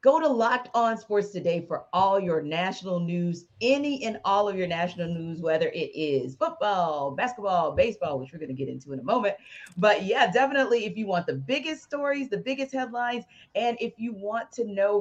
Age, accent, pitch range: 40-59, American, 175-250 Hz